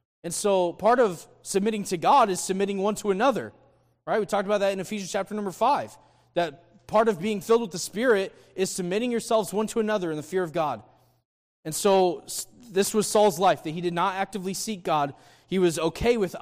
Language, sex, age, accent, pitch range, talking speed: English, male, 20-39, American, 150-195 Hz, 210 wpm